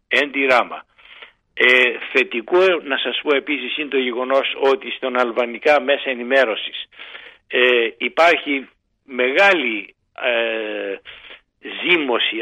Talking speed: 85 wpm